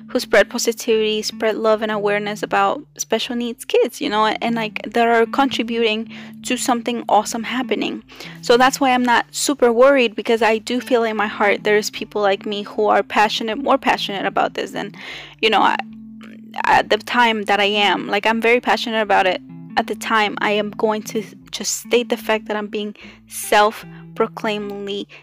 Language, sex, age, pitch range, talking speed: English, female, 10-29, 215-245 Hz, 185 wpm